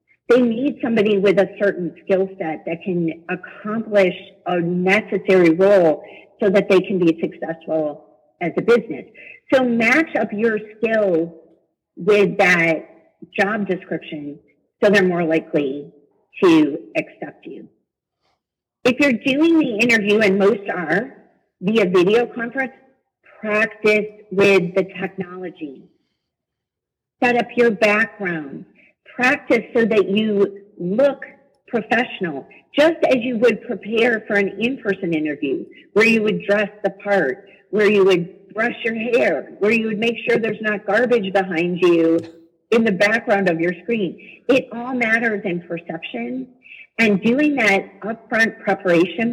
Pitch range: 180-230 Hz